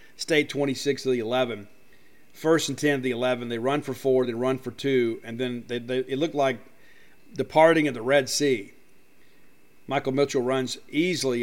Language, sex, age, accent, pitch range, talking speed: English, male, 50-69, American, 125-145 Hz, 190 wpm